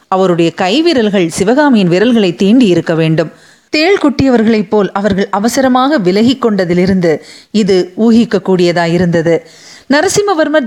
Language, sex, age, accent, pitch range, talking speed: Tamil, female, 30-49, native, 195-265 Hz, 95 wpm